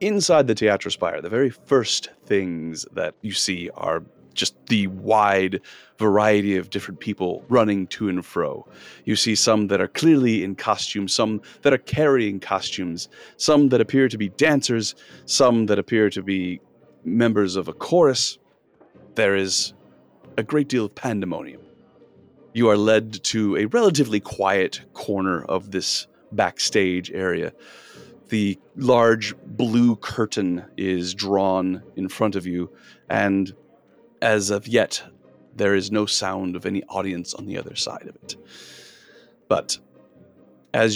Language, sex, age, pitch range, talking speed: English, male, 30-49, 95-110 Hz, 145 wpm